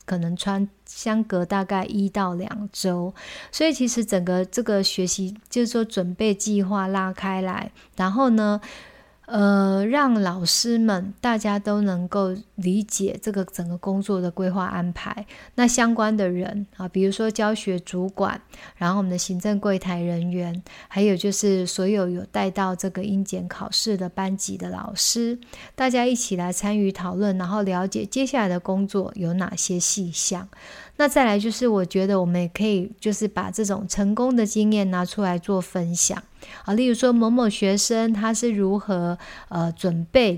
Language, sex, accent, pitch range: Chinese, female, native, 185-220 Hz